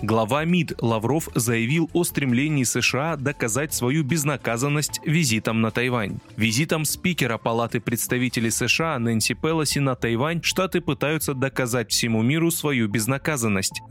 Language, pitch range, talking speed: Russian, 115-155 Hz, 125 wpm